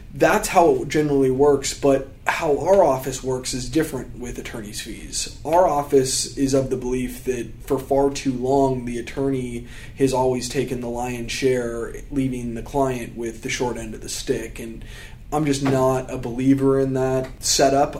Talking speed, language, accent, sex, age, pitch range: 175 wpm, English, American, male, 20-39, 120-135 Hz